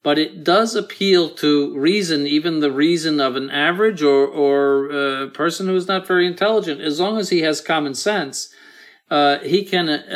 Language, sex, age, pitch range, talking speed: English, male, 50-69, 135-170 Hz, 190 wpm